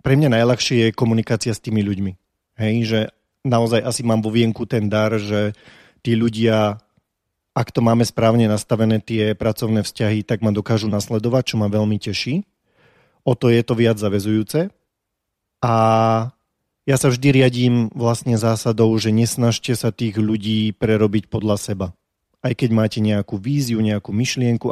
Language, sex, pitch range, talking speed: Slovak, male, 110-120 Hz, 155 wpm